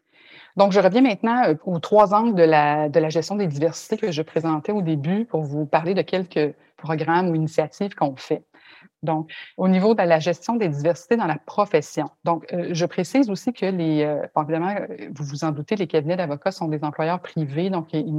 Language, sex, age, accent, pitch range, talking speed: French, female, 30-49, Canadian, 155-185 Hz, 200 wpm